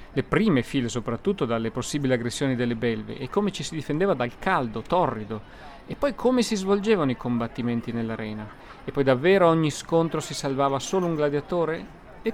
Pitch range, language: 120-165 Hz, Italian